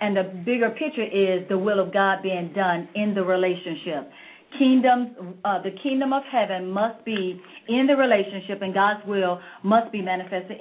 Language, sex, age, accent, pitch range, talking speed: English, female, 40-59, American, 195-250 Hz, 175 wpm